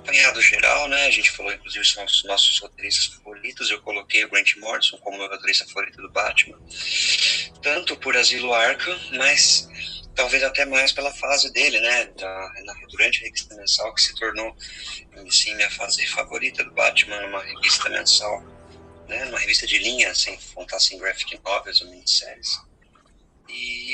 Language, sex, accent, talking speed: Portuguese, male, Brazilian, 170 wpm